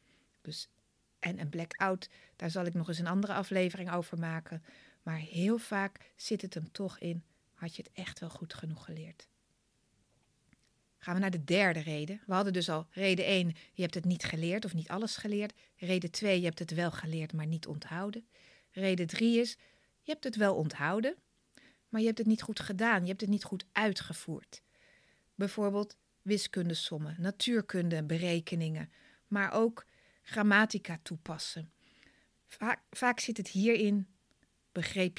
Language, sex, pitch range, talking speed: Dutch, female, 170-210 Hz, 165 wpm